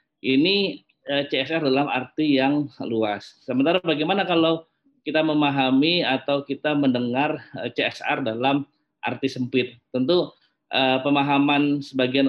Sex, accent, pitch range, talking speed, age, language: male, native, 130-155 Hz, 115 wpm, 20-39, Indonesian